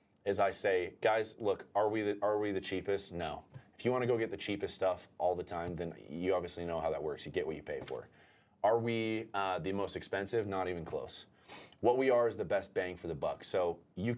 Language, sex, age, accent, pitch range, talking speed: English, male, 30-49, American, 90-115 Hz, 240 wpm